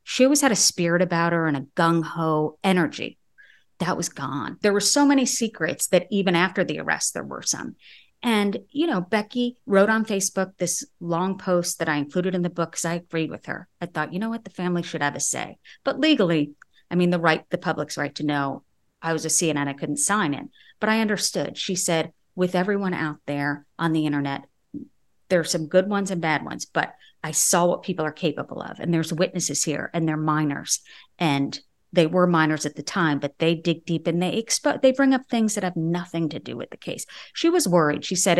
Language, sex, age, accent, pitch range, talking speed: English, female, 40-59, American, 155-190 Hz, 225 wpm